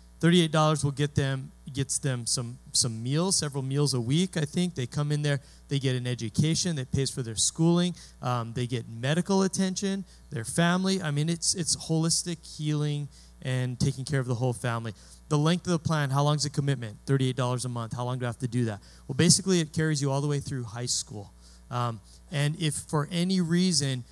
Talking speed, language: 215 wpm, English